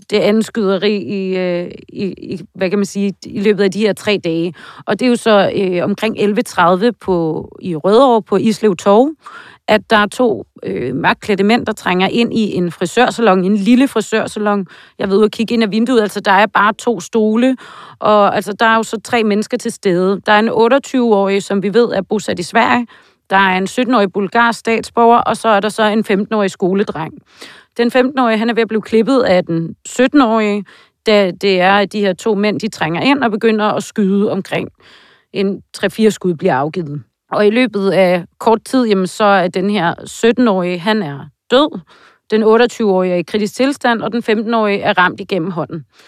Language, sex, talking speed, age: Danish, female, 200 wpm, 30-49